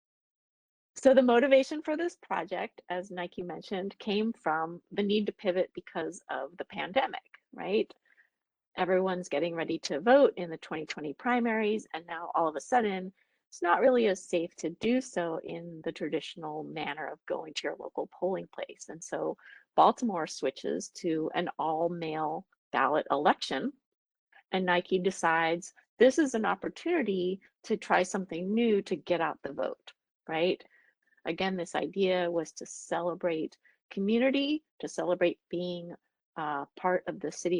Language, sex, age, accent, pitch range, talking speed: English, female, 30-49, American, 170-220 Hz, 155 wpm